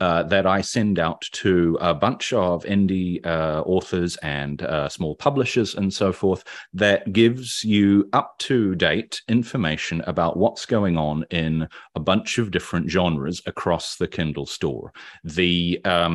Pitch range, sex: 85-105 Hz, male